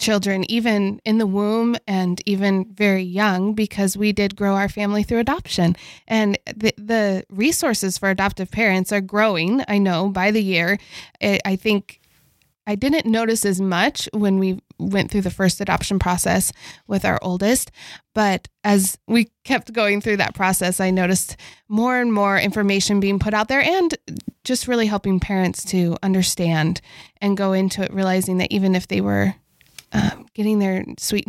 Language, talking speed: English, 170 wpm